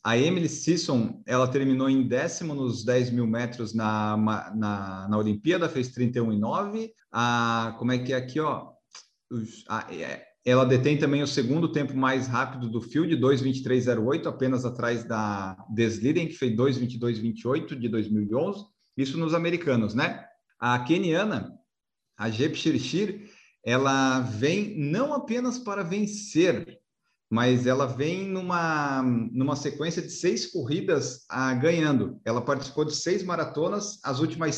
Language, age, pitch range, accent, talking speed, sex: Portuguese, 40-59, 120-155 Hz, Brazilian, 135 wpm, male